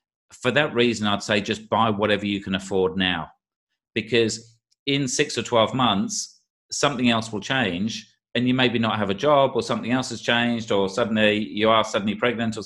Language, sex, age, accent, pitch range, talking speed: English, male, 30-49, British, 100-125 Hz, 195 wpm